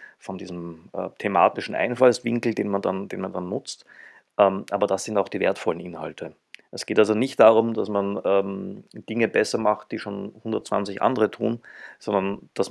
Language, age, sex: German, 30-49, male